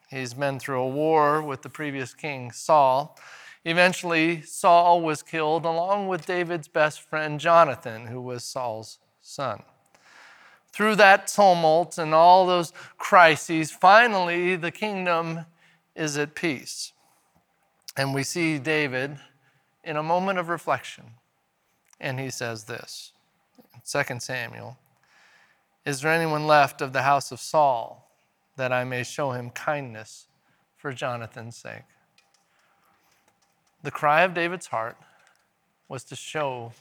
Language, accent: English, American